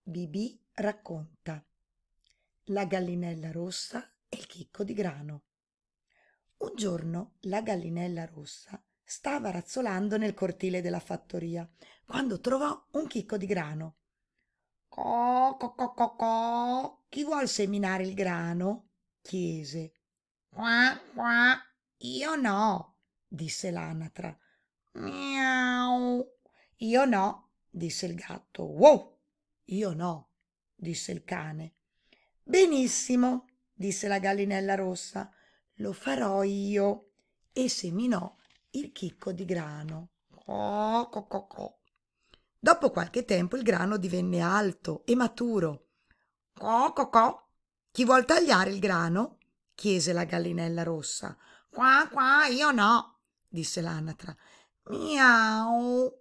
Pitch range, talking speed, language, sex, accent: 175-245 Hz, 100 wpm, Italian, female, native